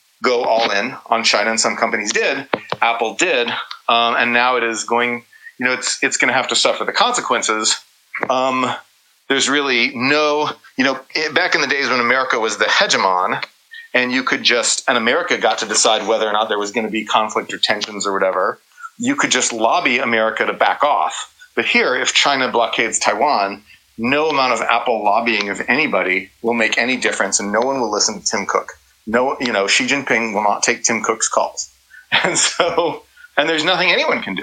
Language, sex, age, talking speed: English, male, 30-49, 205 wpm